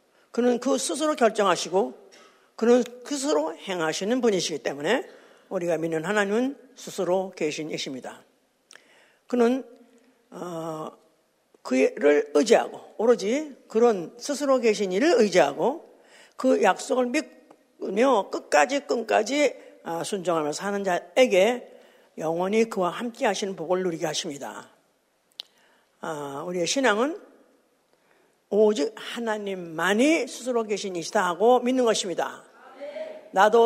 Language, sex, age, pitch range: Korean, female, 50-69, 180-250 Hz